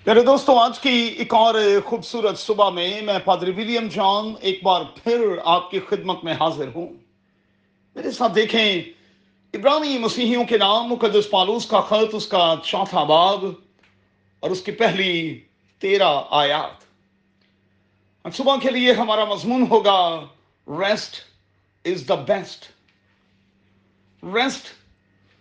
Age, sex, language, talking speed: 40-59, male, Urdu, 130 wpm